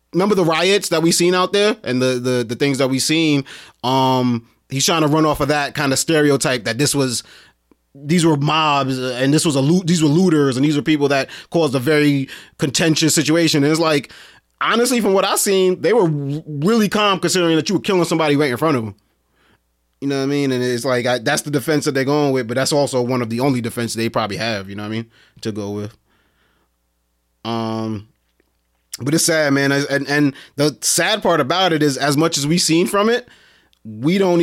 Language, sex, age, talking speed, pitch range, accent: English, male, 30-49, 230 wpm, 125-160 Hz, American